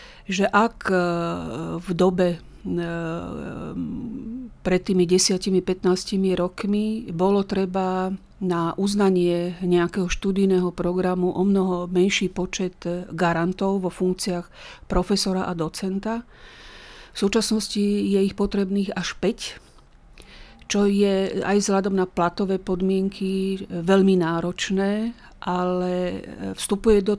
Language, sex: Slovak, female